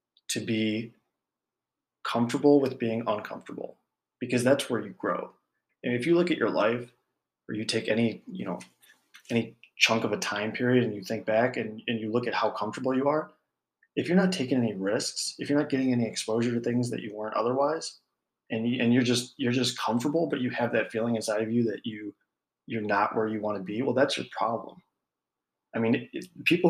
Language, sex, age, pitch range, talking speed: English, male, 20-39, 110-130 Hz, 205 wpm